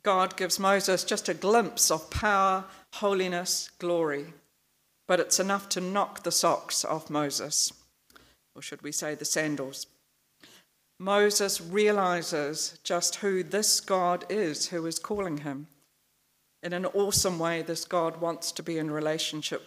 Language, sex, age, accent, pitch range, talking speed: English, female, 50-69, British, 155-185 Hz, 145 wpm